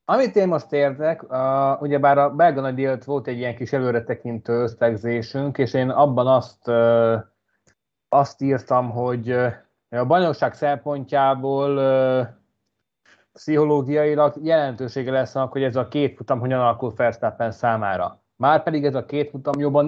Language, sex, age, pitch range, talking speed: Hungarian, male, 20-39, 130-145 Hz, 140 wpm